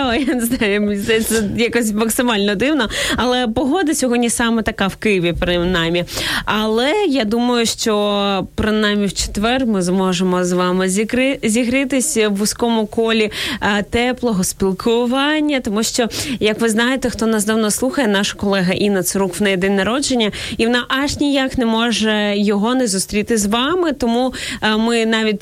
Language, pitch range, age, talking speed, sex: Ukrainian, 205-245 Hz, 20-39, 150 wpm, female